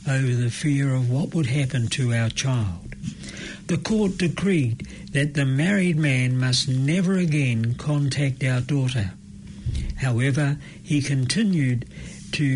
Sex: male